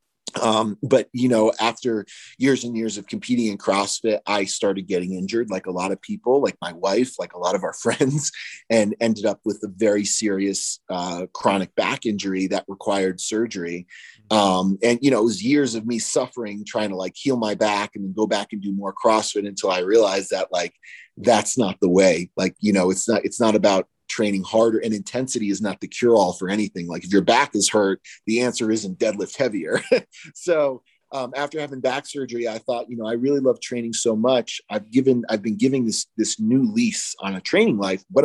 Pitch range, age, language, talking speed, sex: 100-125 Hz, 30-49, French, 215 wpm, male